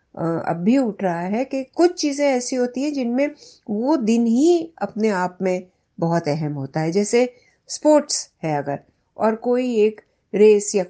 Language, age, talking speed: Hindi, 60-79, 170 wpm